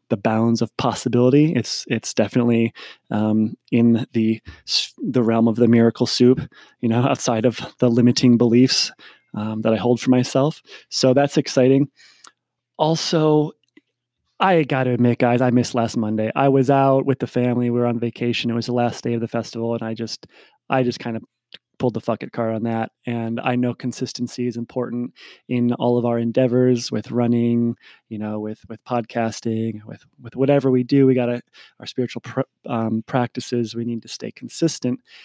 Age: 20-39